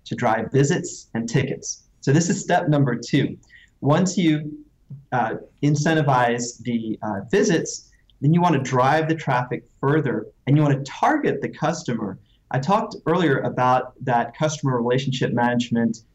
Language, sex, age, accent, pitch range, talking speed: English, male, 30-49, American, 120-145 Hz, 150 wpm